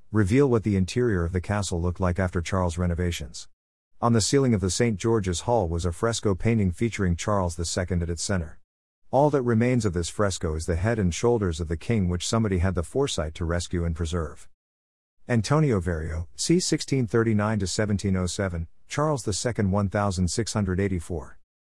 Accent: American